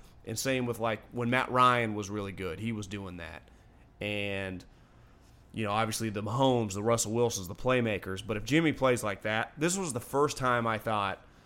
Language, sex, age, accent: English, male, 30-49, American